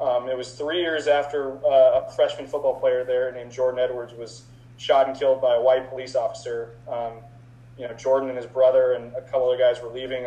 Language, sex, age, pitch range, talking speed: English, male, 20-39, 120-140 Hz, 220 wpm